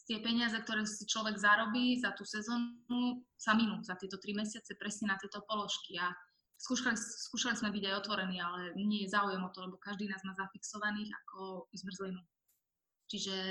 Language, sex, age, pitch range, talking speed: Slovak, female, 20-39, 190-220 Hz, 180 wpm